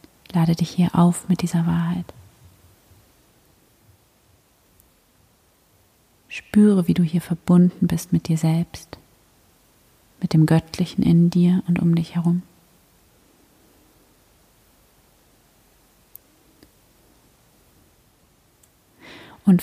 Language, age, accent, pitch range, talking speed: German, 30-49, German, 160-185 Hz, 80 wpm